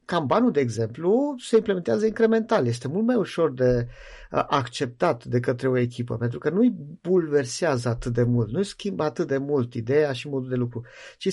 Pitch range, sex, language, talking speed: 125-190 Hz, male, Romanian, 190 wpm